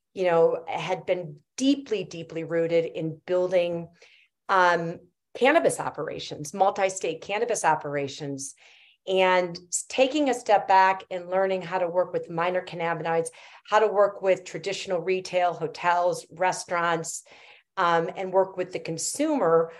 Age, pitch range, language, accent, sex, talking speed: 40-59, 165-205 Hz, English, American, female, 125 wpm